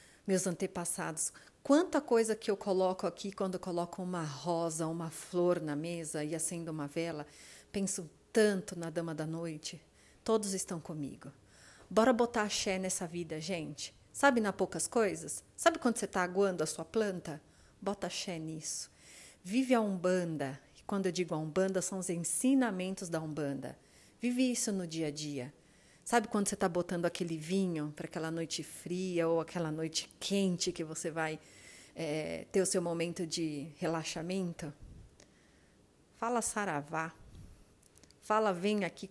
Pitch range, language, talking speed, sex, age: 160-200 Hz, Portuguese, 155 wpm, female, 40-59